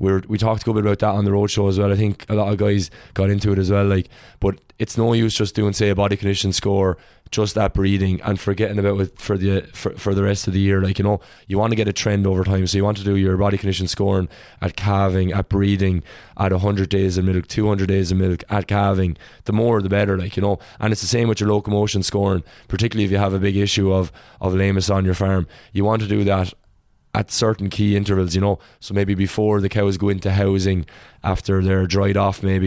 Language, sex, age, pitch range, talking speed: English, male, 20-39, 95-105 Hz, 255 wpm